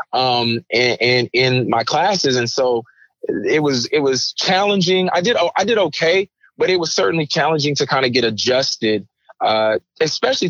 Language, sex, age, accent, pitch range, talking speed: English, male, 20-39, American, 125-160 Hz, 170 wpm